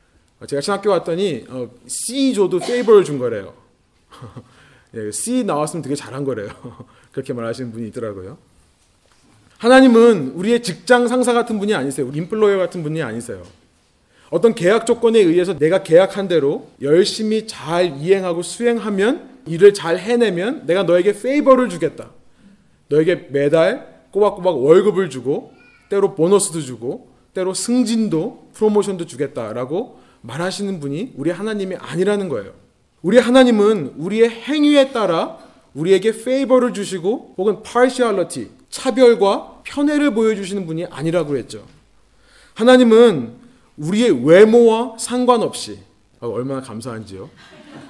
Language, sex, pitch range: Korean, male, 160-240 Hz